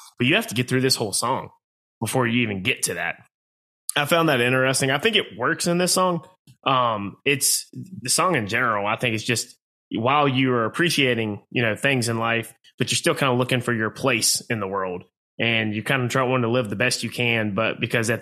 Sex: male